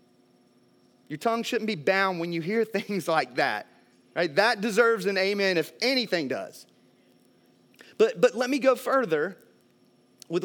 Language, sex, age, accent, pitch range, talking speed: English, male, 30-49, American, 160-220 Hz, 150 wpm